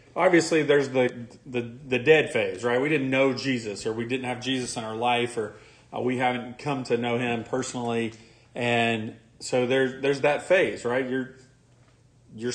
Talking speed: 180 wpm